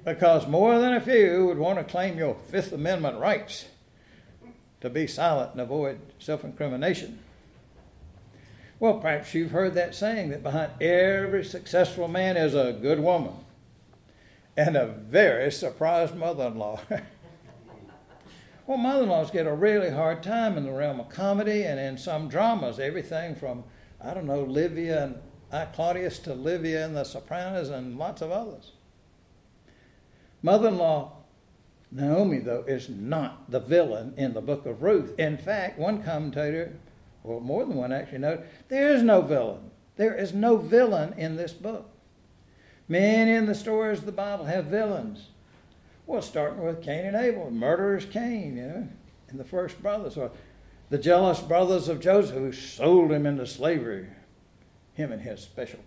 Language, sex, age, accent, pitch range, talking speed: English, male, 60-79, American, 135-195 Hz, 155 wpm